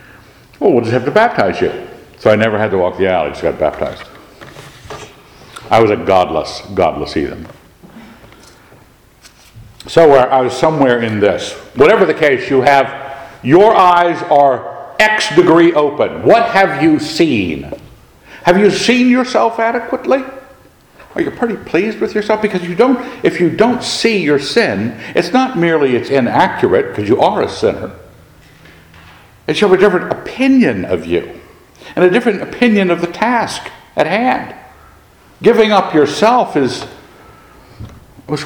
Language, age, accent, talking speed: English, 60-79, American, 150 wpm